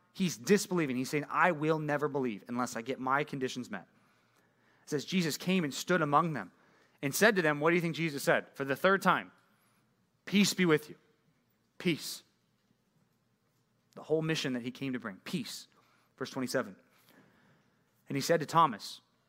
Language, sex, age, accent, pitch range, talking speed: English, male, 30-49, American, 145-195 Hz, 175 wpm